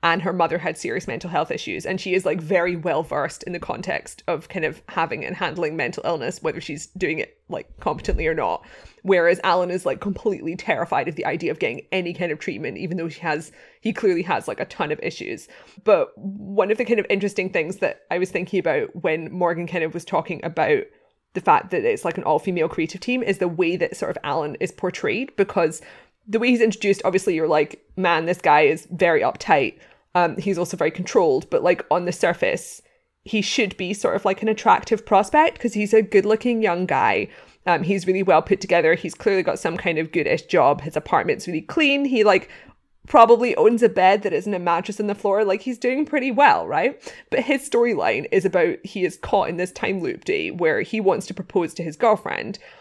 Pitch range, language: 175-230 Hz, English